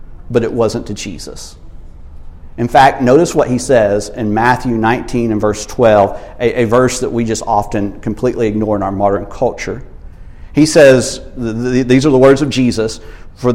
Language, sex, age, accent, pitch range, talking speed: English, male, 50-69, American, 100-145 Hz, 175 wpm